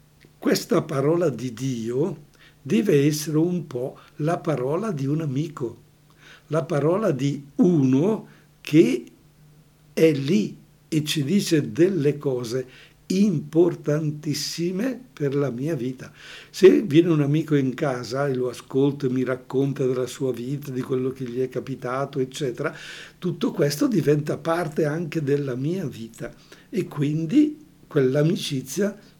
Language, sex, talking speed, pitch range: Italian, male, 130 wpm, 135-165 Hz